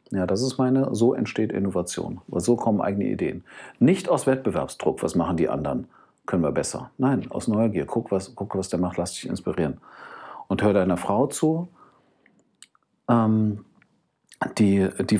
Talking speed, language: 160 wpm, German